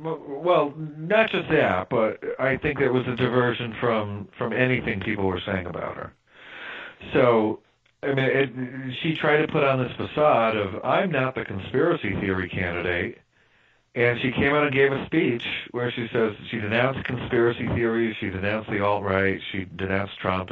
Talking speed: 175 wpm